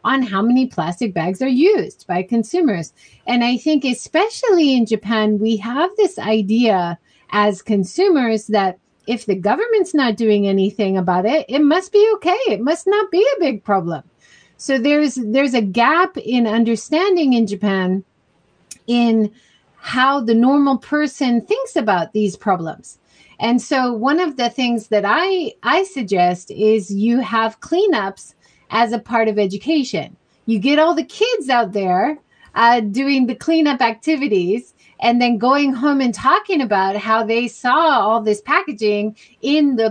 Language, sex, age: English, female, 30-49